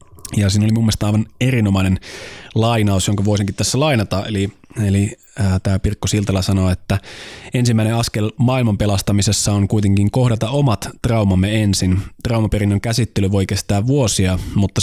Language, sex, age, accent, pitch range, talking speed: Finnish, male, 20-39, native, 95-115 Hz, 140 wpm